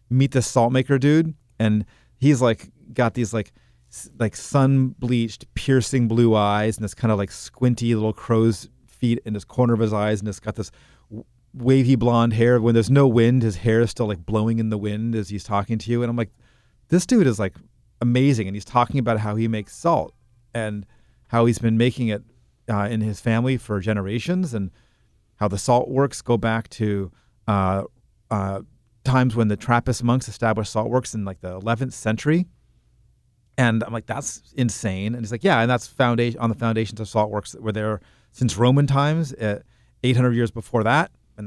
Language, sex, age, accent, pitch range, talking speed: English, male, 30-49, American, 105-125 Hz, 200 wpm